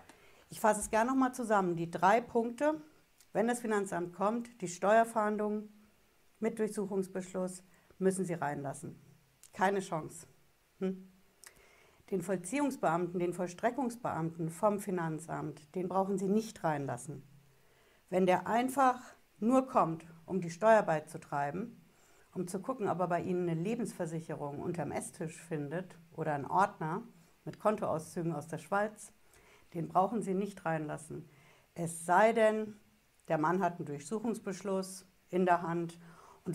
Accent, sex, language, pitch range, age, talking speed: German, female, German, 165-205 Hz, 60-79, 135 wpm